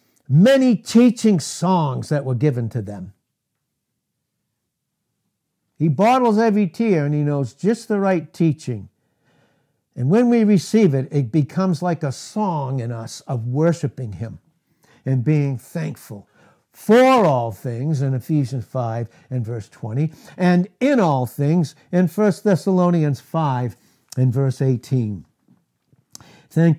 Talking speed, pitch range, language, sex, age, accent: 130 wpm, 135-195 Hz, English, male, 60-79, American